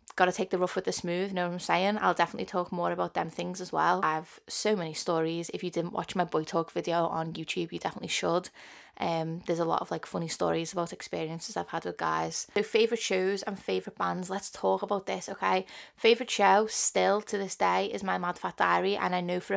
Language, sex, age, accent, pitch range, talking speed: English, female, 20-39, British, 175-200 Hz, 240 wpm